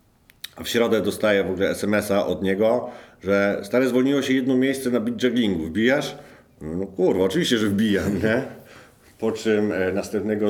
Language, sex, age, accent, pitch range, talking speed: Polish, male, 50-69, native, 85-105 Hz, 165 wpm